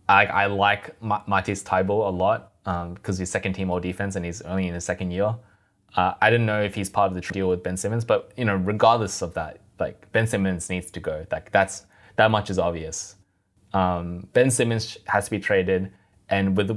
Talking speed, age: 230 wpm, 20-39